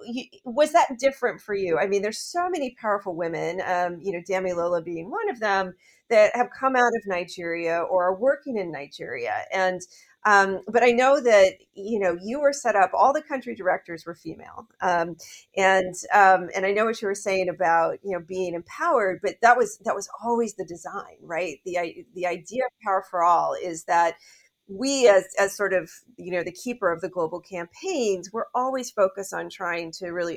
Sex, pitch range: female, 175-245 Hz